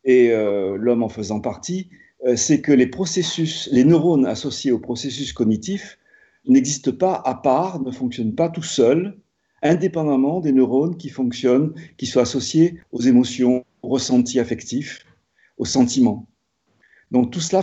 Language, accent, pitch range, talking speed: French, French, 125-170 Hz, 150 wpm